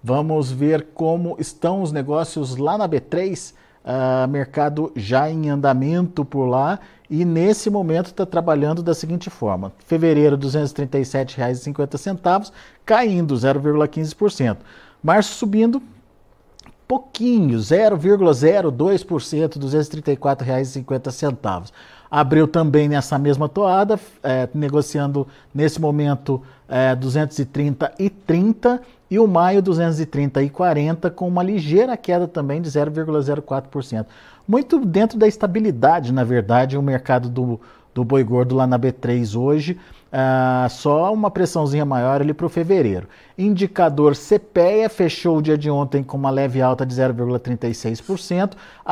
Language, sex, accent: Portuguese, male, Brazilian